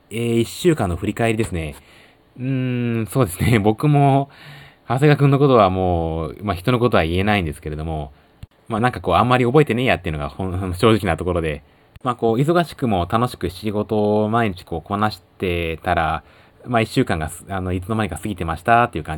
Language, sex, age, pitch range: Japanese, male, 20-39, 85-130 Hz